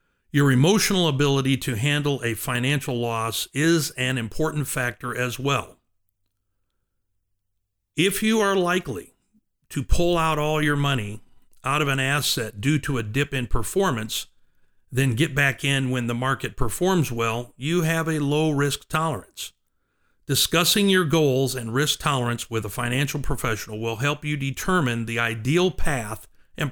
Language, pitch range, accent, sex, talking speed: English, 115-150 Hz, American, male, 150 wpm